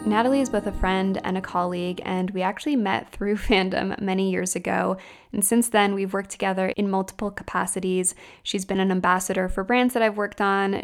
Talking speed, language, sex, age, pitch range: 200 wpm, English, female, 10-29, 185-215 Hz